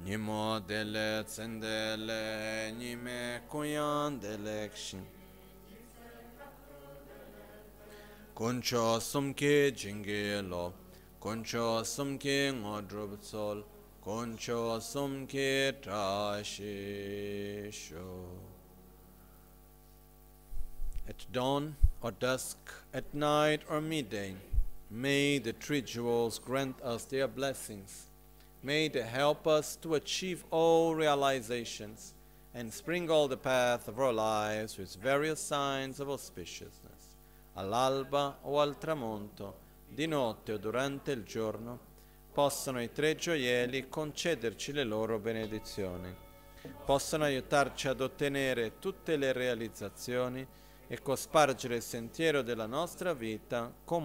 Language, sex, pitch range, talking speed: Italian, male, 105-140 Hz, 95 wpm